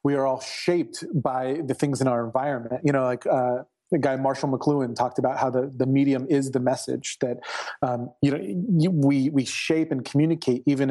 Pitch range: 125-150 Hz